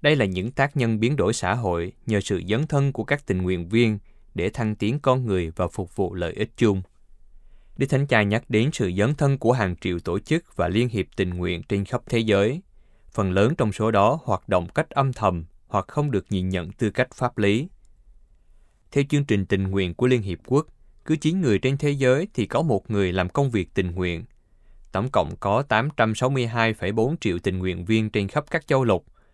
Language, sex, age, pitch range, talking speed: Vietnamese, male, 20-39, 95-125 Hz, 220 wpm